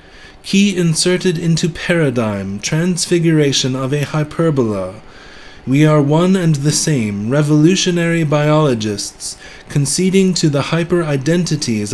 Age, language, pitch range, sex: 30-49, English, 115-165 Hz, male